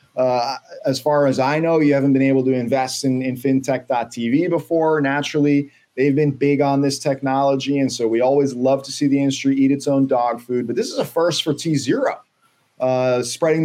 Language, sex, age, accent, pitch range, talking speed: English, male, 30-49, American, 125-150 Hz, 200 wpm